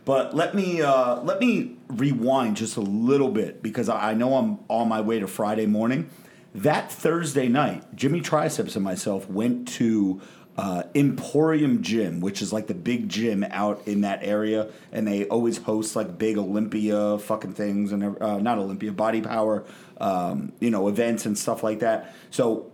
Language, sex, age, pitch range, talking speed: English, male, 30-49, 105-145 Hz, 175 wpm